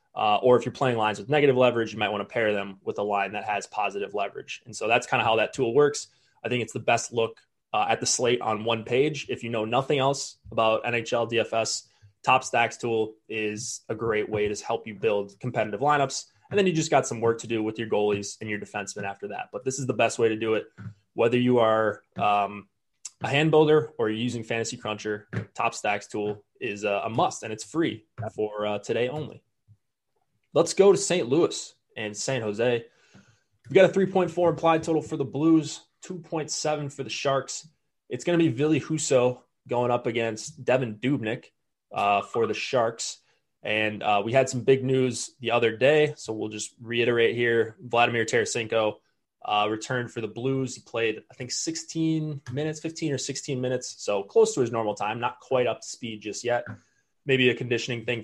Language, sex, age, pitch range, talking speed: English, male, 20-39, 110-140 Hz, 210 wpm